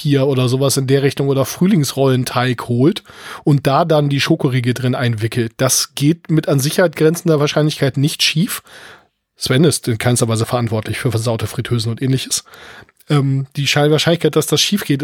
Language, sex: English, male